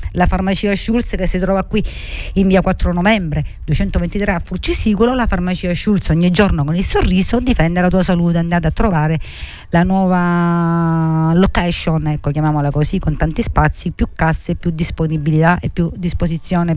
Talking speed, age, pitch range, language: 160 wpm, 50-69, 155-190 Hz, Italian